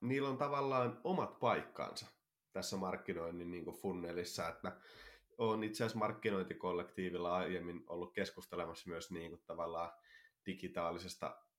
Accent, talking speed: native, 100 wpm